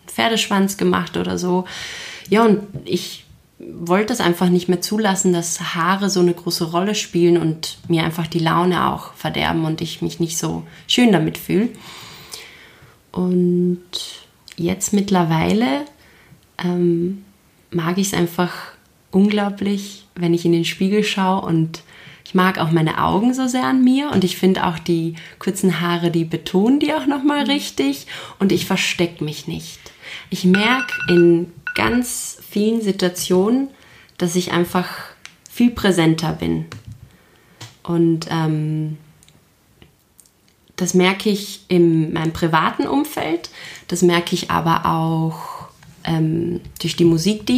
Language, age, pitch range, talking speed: German, 20-39, 165-195 Hz, 135 wpm